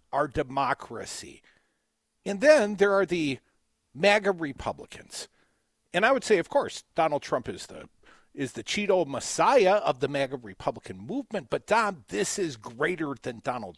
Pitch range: 150-220 Hz